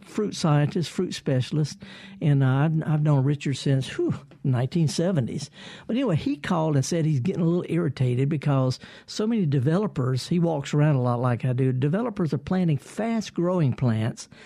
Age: 60-79